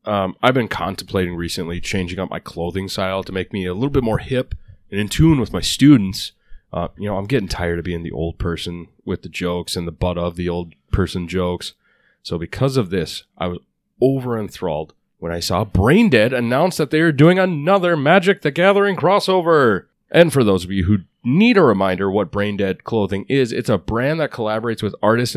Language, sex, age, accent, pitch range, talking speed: English, male, 30-49, American, 95-135 Hz, 210 wpm